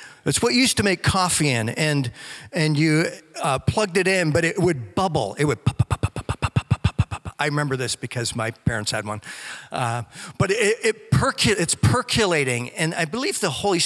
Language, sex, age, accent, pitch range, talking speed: English, male, 50-69, American, 130-180 Hz, 180 wpm